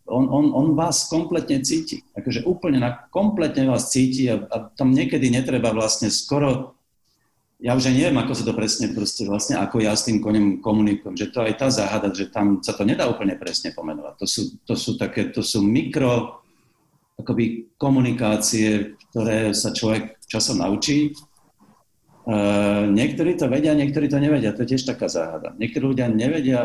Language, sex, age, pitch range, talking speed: Slovak, male, 50-69, 105-140 Hz, 175 wpm